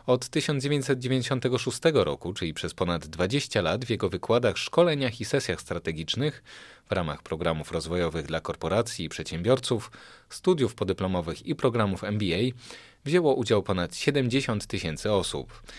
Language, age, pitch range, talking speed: Polish, 30-49, 85-130 Hz, 130 wpm